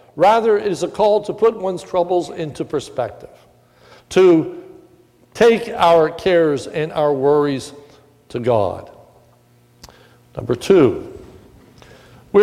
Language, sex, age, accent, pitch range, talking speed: English, male, 60-79, American, 165-230 Hz, 110 wpm